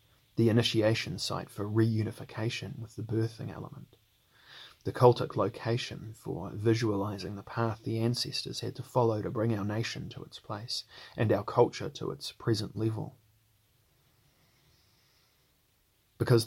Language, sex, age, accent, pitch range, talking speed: English, male, 30-49, Australian, 105-120 Hz, 130 wpm